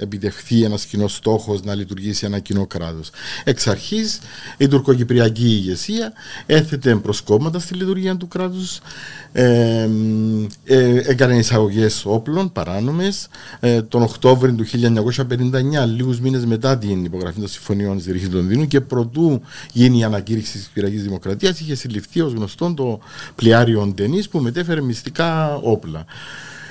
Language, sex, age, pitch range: Greek, male, 50-69, 110-155 Hz